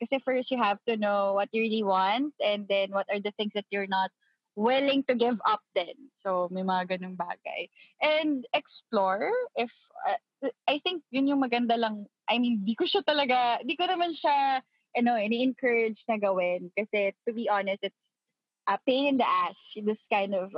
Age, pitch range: 20-39, 200-255 Hz